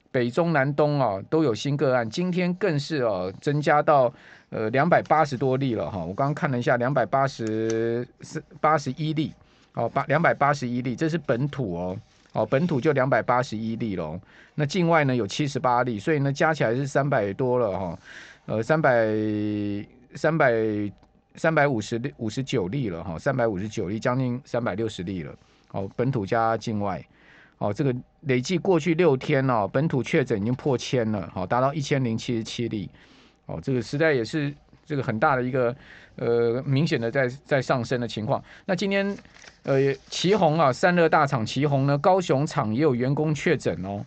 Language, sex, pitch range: Chinese, male, 115-155 Hz